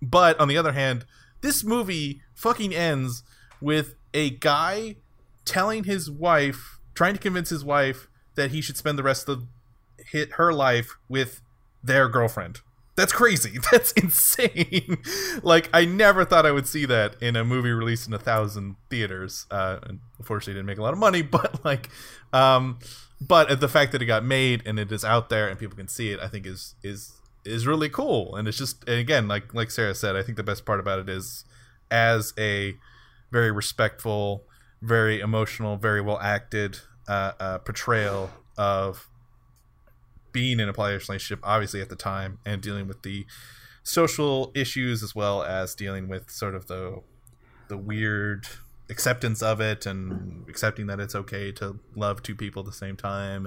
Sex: male